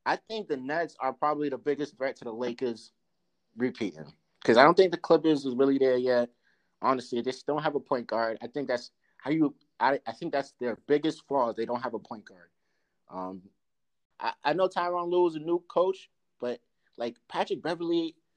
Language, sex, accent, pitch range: English, male, American, 120-170 Hz